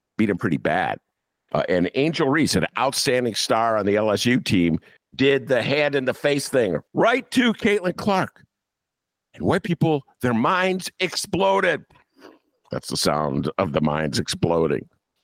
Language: English